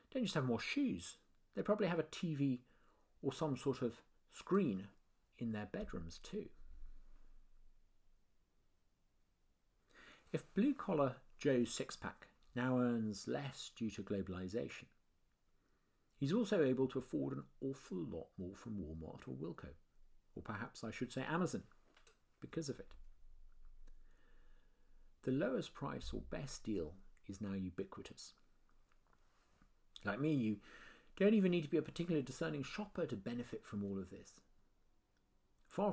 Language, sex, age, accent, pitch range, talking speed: English, male, 50-69, British, 95-145 Hz, 135 wpm